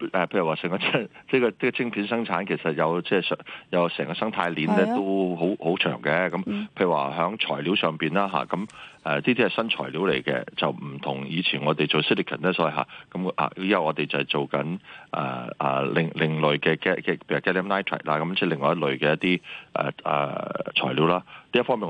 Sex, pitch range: male, 75-95 Hz